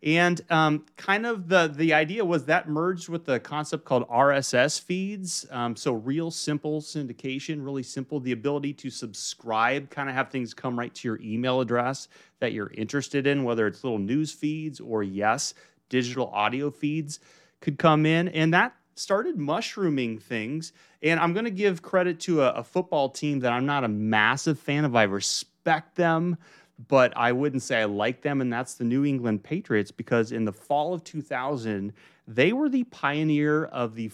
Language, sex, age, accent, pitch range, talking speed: English, male, 30-49, American, 120-165 Hz, 185 wpm